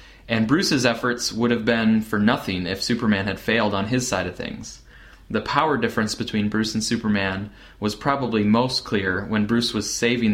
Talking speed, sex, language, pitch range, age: 185 wpm, male, English, 100-120 Hz, 20-39